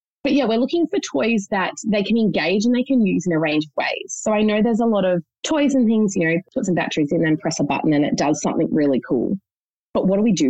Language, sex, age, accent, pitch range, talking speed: English, female, 20-39, Australian, 160-220 Hz, 285 wpm